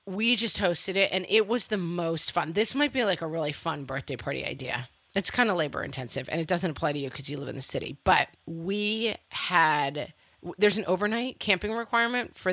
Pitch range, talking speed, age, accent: 165-210 Hz, 220 wpm, 30-49, American